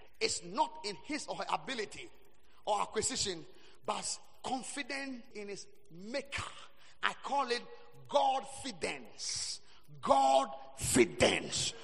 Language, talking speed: English, 100 wpm